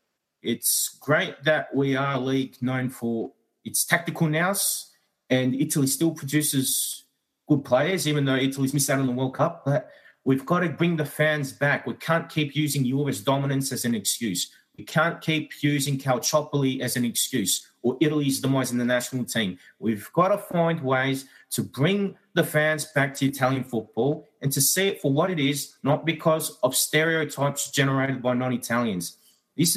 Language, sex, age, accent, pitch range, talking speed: English, male, 30-49, Australian, 130-165 Hz, 175 wpm